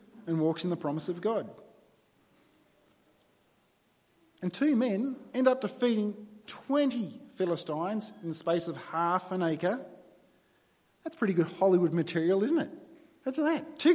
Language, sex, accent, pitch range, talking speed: English, male, Australian, 165-225 Hz, 140 wpm